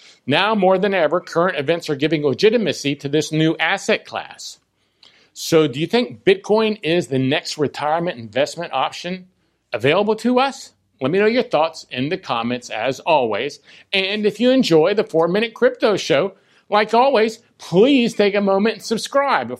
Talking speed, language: 165 wpm, English